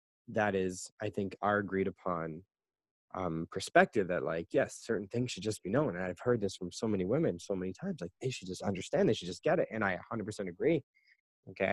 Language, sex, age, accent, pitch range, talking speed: English, male, 20-39, American, 95-110 Hz, 235 wpm